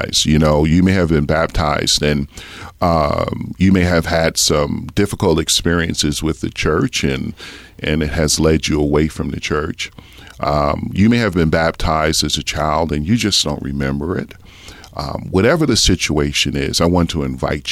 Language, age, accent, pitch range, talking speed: English, 40-59, American, 75-95 Hz, 180 wpm